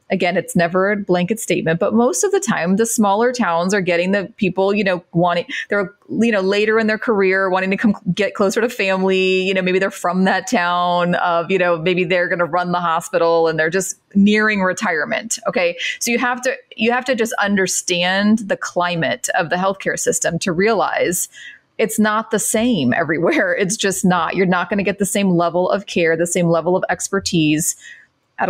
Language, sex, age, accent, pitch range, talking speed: English, female, 30-49, American, 170-210 Hz, 210 wpm